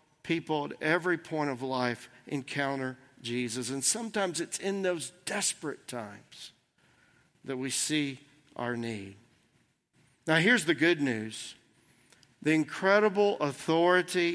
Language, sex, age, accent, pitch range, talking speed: English, male, 50-69, American, 145-205 Hz, 115 wpm